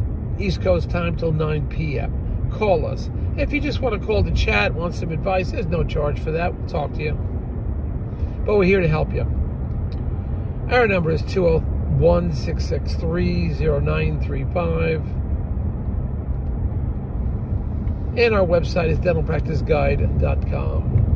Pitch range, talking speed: 75-90 Hz, 125 wpm